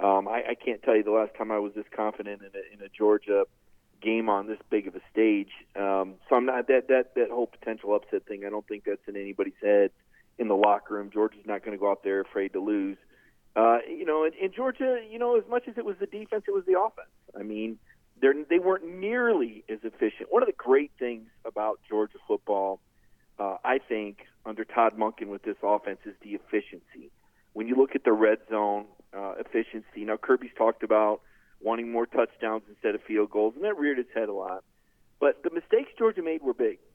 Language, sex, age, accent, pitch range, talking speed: English, male, 40-59, American, 105-160 Hz, 220 wpm